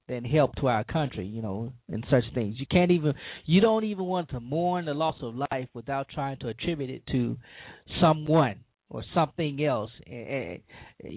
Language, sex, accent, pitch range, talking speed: English, male, American, 130-180 Hz, 185 wpm